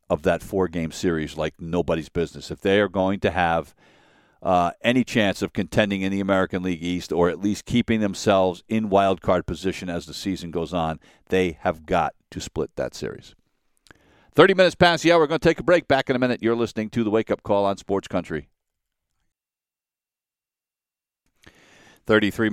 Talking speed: 190 wpm